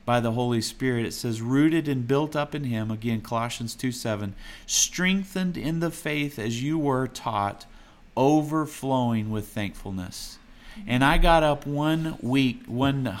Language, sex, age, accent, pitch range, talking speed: English, male, 40-59, American, 115-145 Hz, 155 wpm